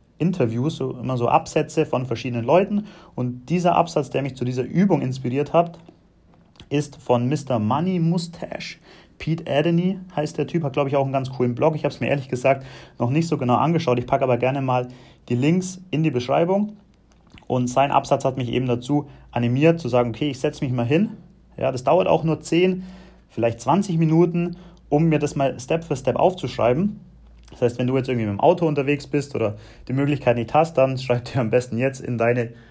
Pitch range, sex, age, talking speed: 120-155 Hz, male, 30-49, 205 wpm